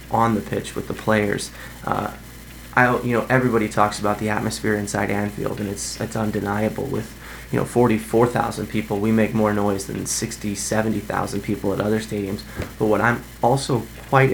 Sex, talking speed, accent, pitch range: male, 175 wpm, American, 105-115 Hz